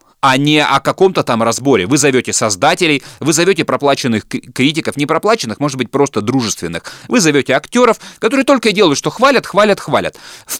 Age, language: 30-49, Russian